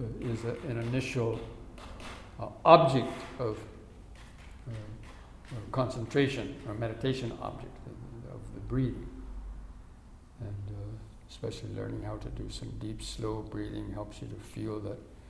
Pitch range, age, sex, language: 105-125 Hz, 60-79, male, English